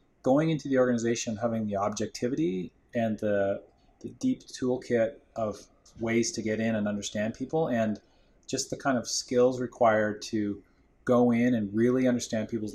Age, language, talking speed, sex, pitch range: 30-49, English, 160 wpm, male, 105-120 Hz